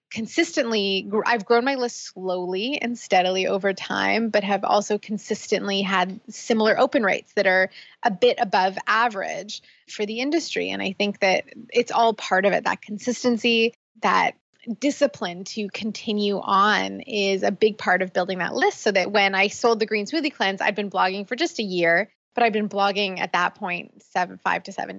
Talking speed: 185 wpm